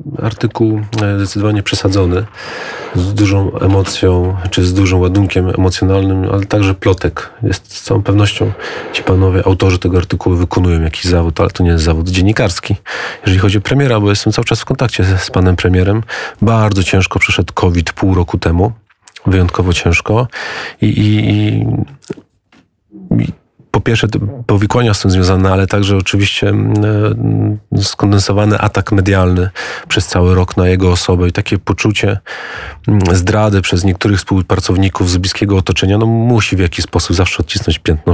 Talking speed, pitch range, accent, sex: 145 wpm, 90-105 Hz, native, male